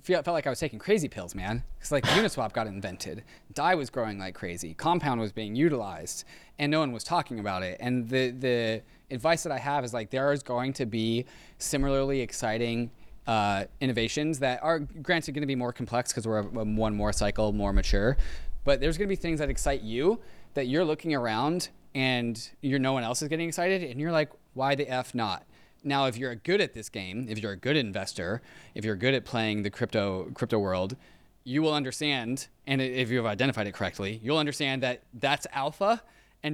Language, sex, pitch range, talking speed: English, male, 110-145 Hz, 210 wpm